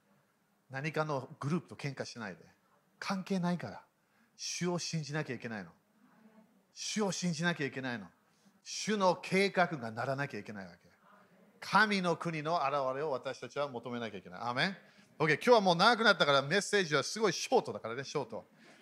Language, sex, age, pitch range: Japanese, male, 40-59, 145-200 Hz